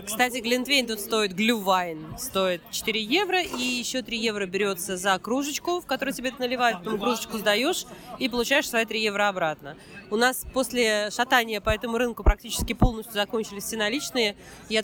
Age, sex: 20-39, female